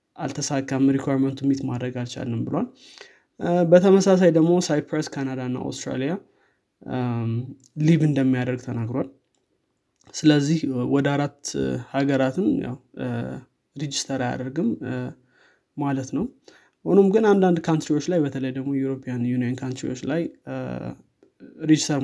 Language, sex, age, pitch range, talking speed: Amharic, male, 20-39, 130-150 Hz, 95 wpm